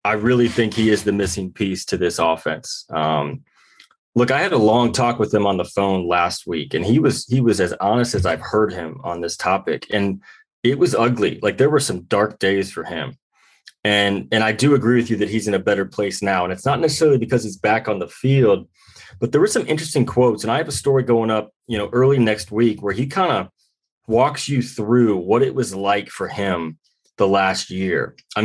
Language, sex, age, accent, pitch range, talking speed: English, male, 30-49, American, 100-125 Hz, 230 wpm